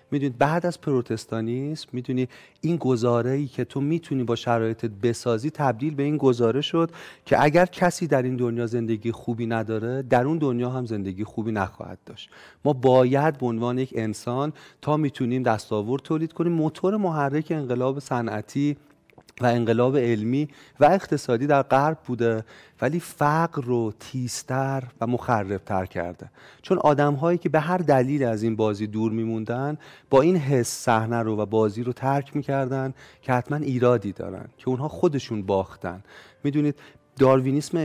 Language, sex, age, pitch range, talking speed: Persian, male, 40-59, 115-145 Hz, 150 wpm